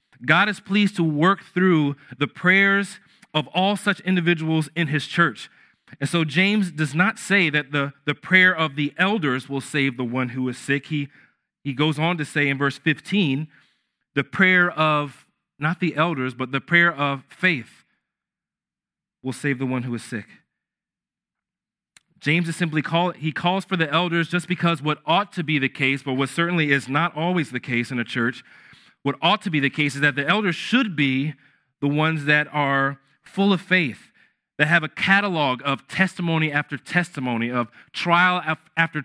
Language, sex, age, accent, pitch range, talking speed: English, male, 40-59, American, 140-175 Hz, 185 wpm